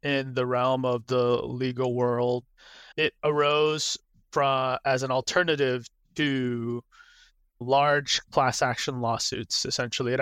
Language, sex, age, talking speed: English, male, 30-49, 110 wpm